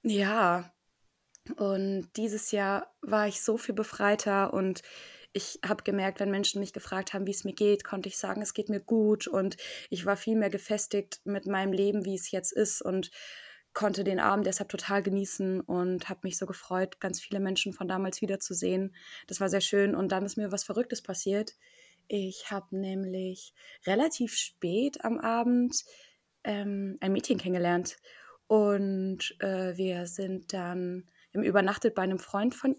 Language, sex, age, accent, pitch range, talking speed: German, female, 20-39, German, 190-220 Hz, 170 wpm